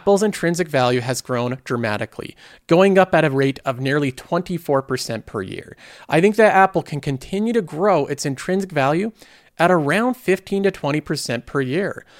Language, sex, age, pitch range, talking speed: English, male, 40-59, 145-195 Hz, 165 wpm